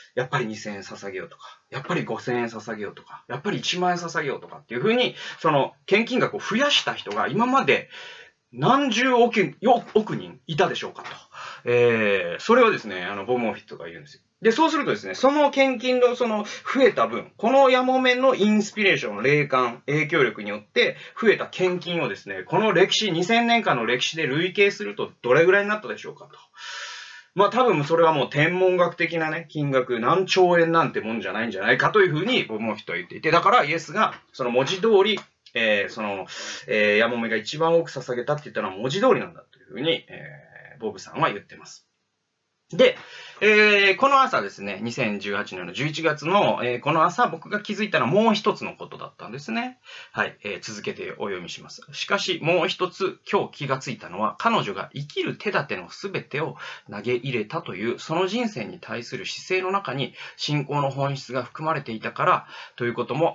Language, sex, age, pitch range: Japanese, male, 30-49, 130-210 Hz